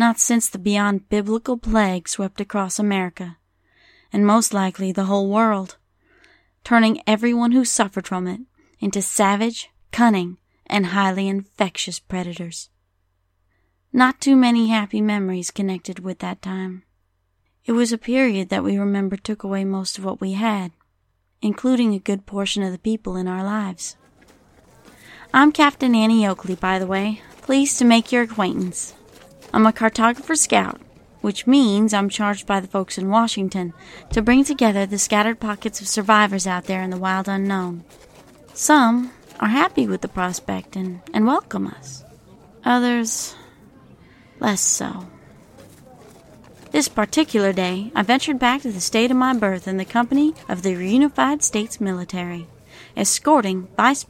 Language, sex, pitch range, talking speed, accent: English, female, 190-235 Hz, 150 wpm, American